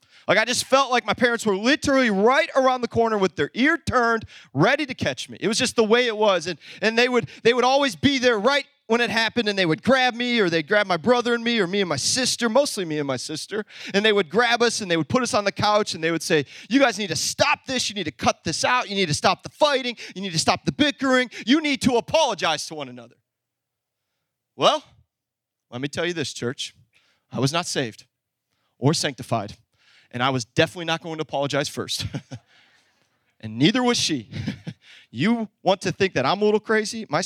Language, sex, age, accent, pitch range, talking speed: English, male, 30-49, American, 150-245 Hz, 235 wpm